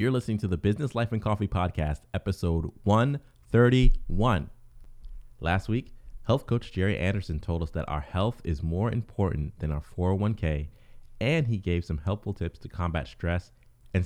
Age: 30-49